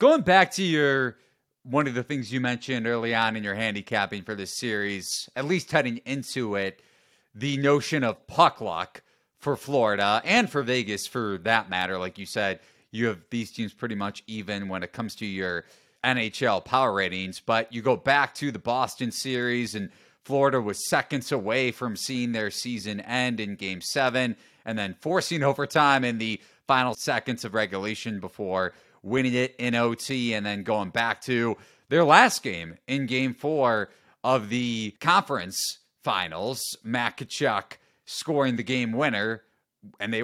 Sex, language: male, English